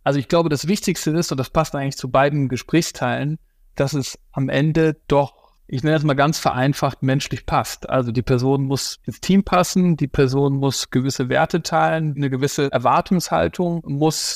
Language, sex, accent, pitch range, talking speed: German, male, German, 135-160 Hz, 180 wpm